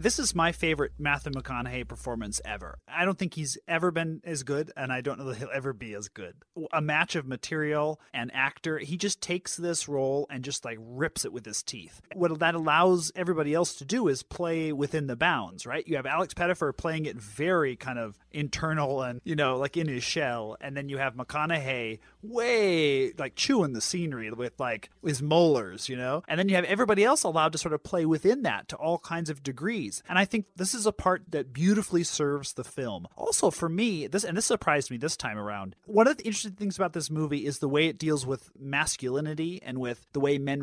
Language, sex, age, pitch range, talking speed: English, male, 30-49, 135-175 Hz, 225 wpm